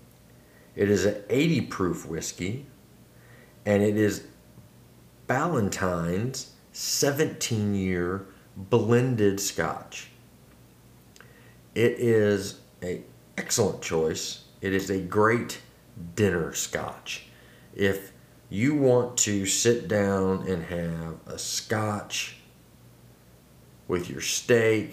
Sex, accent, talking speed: male, American, 90 wpm